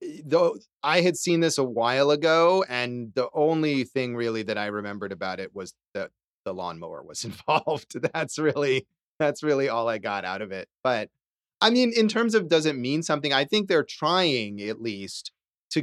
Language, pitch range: English, 120-165 Hz